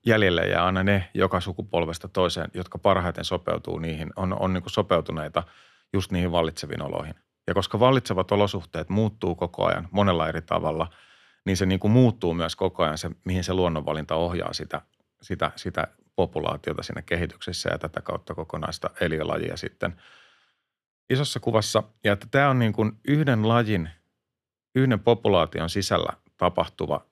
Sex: male